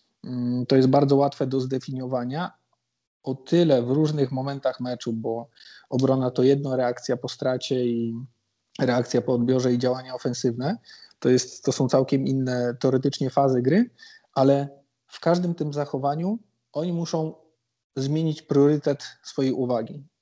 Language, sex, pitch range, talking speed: Polish, male, 130-150 Hz, 135 wpm